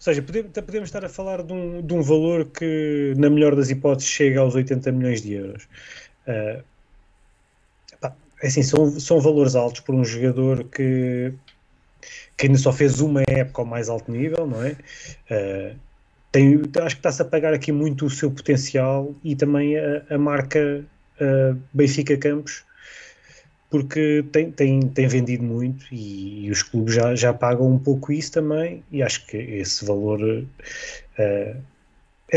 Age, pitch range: 20-39, 125-150 Hz